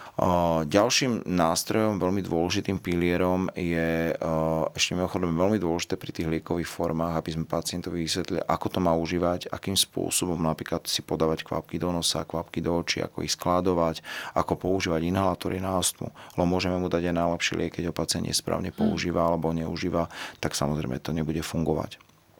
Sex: male